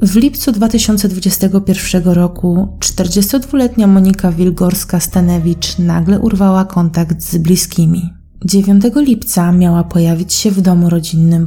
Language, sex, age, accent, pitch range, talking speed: Polish, female, 20-39, native, 175-210 Hz, 105 wpm